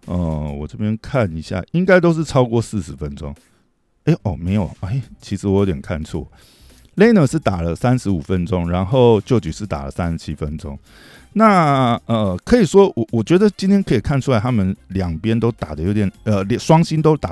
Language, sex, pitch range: Chinese, male, 90-125 Hz